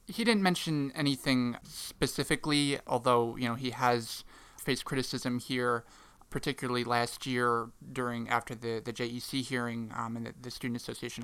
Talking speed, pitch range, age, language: 150 wpm, 120-130 Hz, 30-49, English